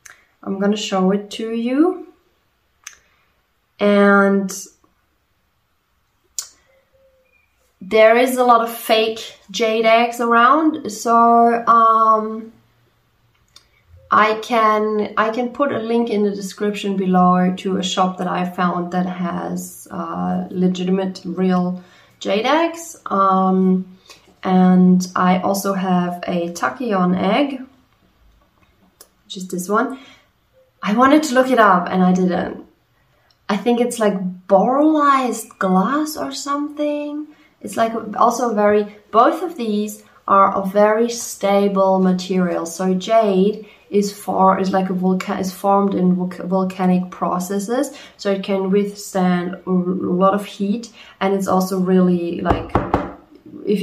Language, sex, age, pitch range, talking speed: German, female, 20-39, 185-230 Hz, 125 wpm